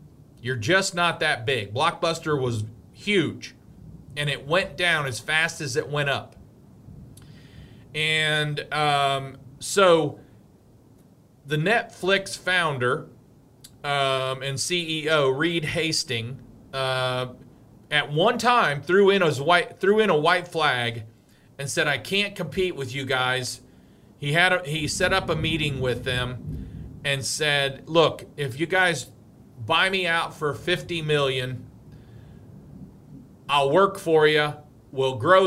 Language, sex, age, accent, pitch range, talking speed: English, male, 40-59, American, 130-175 Hz, 125 wpm